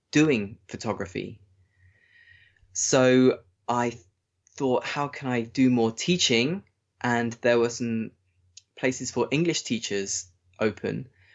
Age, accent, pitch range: 20-39, British, 100-135 Hz